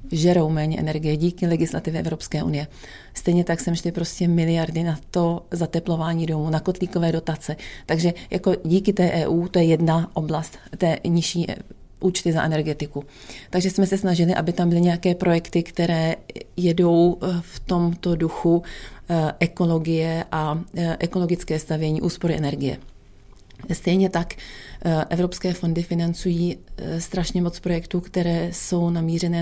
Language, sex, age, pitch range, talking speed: Czech, female, 30-49, 155-175 Hz, 135 wpm